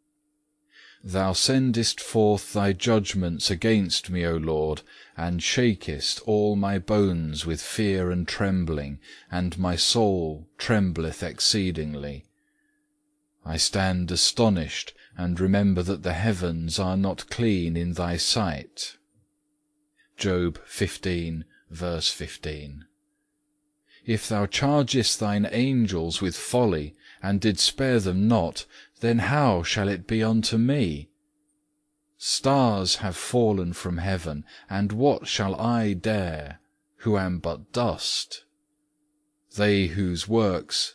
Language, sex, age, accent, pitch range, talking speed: English, male, 40-59, British, 90-120 Hz, 115 wpm